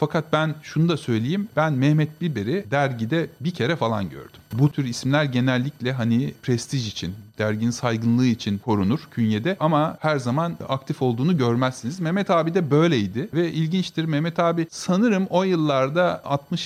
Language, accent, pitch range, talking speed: Turkish, native, 120-165 Hz, 155 wpm